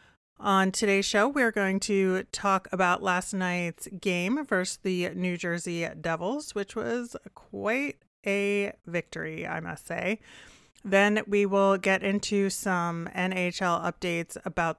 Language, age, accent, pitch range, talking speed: English, 30-49, American, 175-205 Hz, 135 wpm